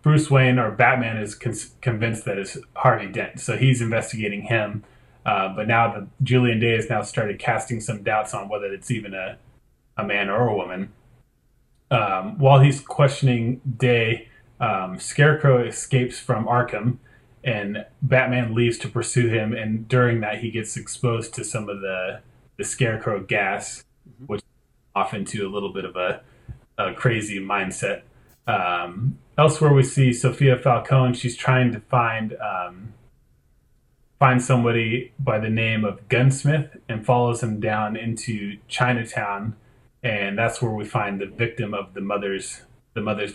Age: 30-49